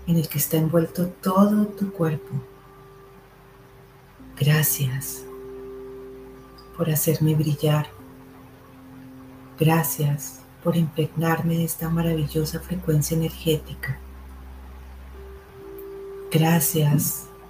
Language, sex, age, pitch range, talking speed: Spanish, female, 40-59, 130-165 Hz, 70 wpm